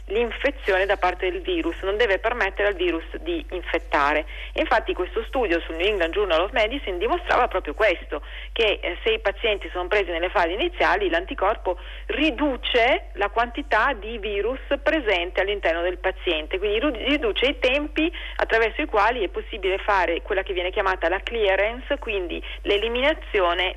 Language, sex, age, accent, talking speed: Italian, female, 40-59, native, 155 wpm